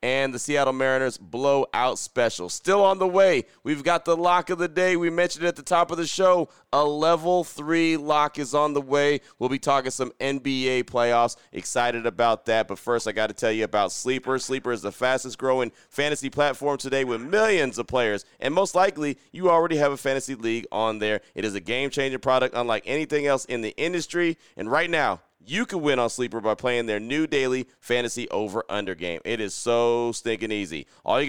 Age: 30-49